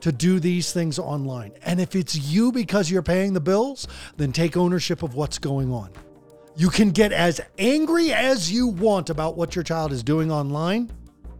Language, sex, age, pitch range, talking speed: English, male, 40-59, 150-190 Hz, 190 wpm